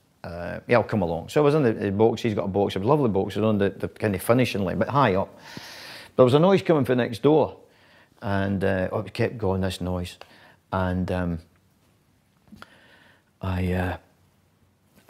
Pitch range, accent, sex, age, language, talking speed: 95-120 Hz, British, male, 40-59, English, 215 wpm